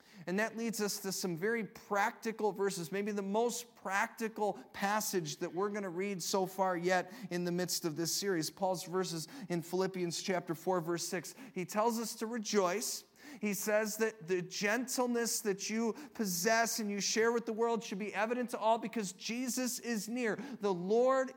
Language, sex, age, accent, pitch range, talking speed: English, male, 40-59, American, 185-230 Hz, 185 wpm